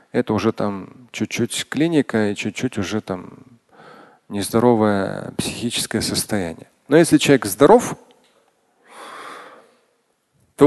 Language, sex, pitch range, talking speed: Russian, male, 120-160 Hz, 90 wpm